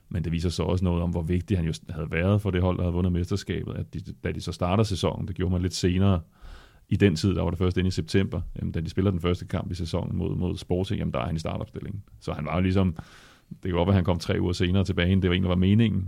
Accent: native